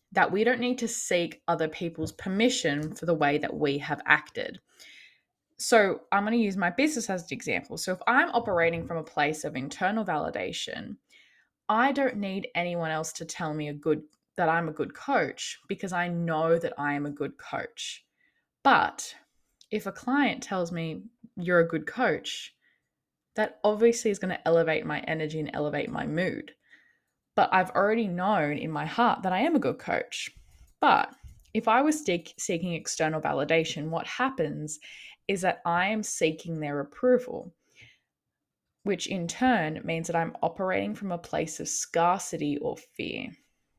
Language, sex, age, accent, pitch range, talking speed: English, female, 10-29, Australian, 160-215 Hz, 170 wpm